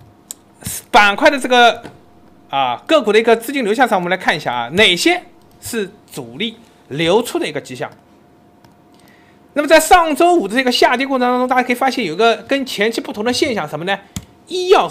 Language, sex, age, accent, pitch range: Chinese, male, 30-49, native, 195-290 Hz